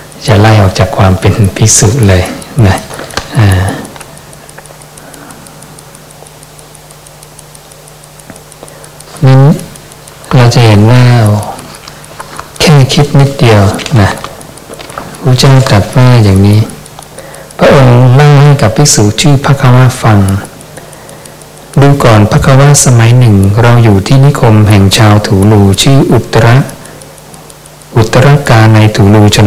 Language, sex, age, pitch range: English, male, 60-79, 105-135 Hz